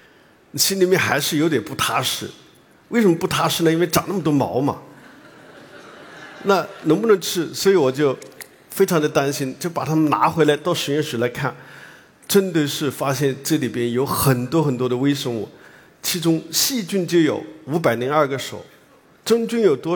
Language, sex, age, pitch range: Chinese, male, 50-69, 135-180 Hz